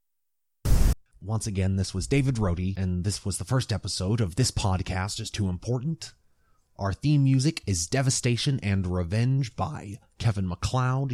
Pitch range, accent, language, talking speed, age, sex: 95-120 Hz, American, English, 150 wpm, 30-49, male